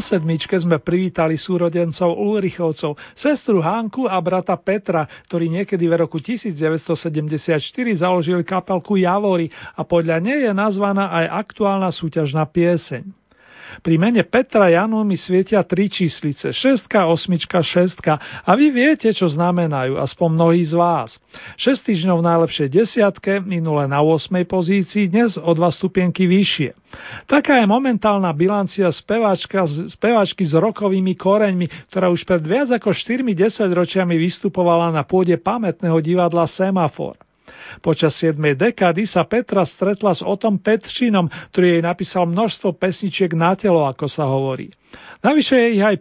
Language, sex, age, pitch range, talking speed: Slovak, male, 40-59, 165-205 Hz, 135 wpm